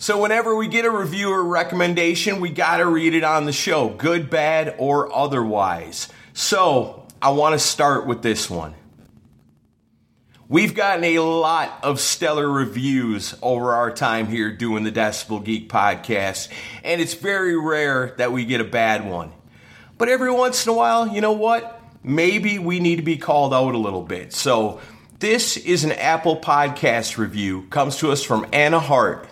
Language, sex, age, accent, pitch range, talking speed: English, male, 40-59, American, 115-170 Hz, 175 wpm